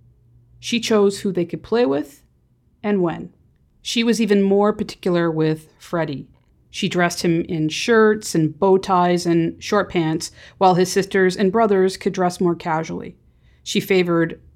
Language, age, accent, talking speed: English, 40-59, American, 155 wpm